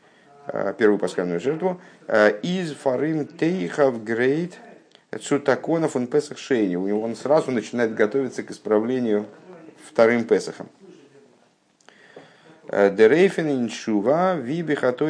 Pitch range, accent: 105-170 Hz, native